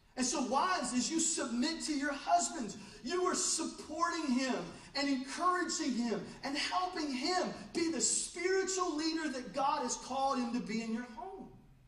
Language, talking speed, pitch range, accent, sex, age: English, 165 wpm, 230-320 Hz, American, male, 40-59